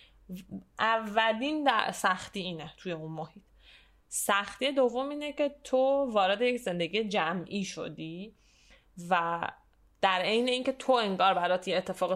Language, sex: Persian, female